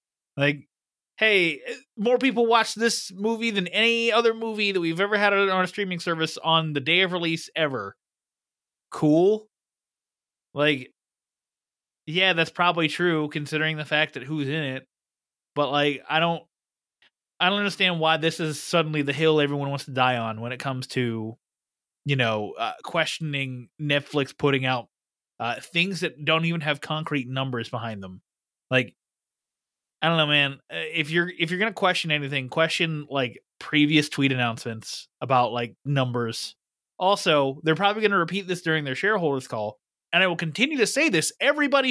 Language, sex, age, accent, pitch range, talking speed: English, male, 30-49, American, 140-200 Hz, 170 wpm